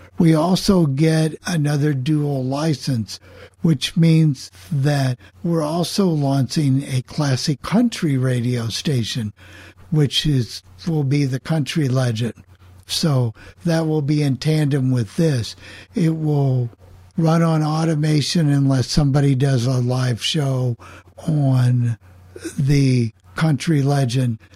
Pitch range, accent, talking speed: 120-160 Hz, American, 115 wpm